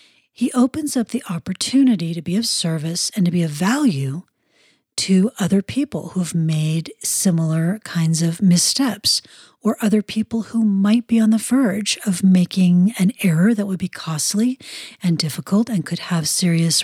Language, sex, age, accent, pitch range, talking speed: English, female, 40-59, American, 165-215 Hz, 170 wpm